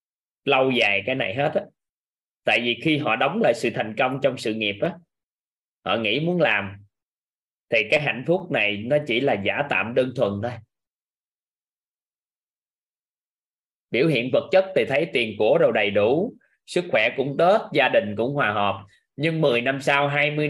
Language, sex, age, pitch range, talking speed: Vietnamese, male, 20-39, 110-155 Hz, 180 wpm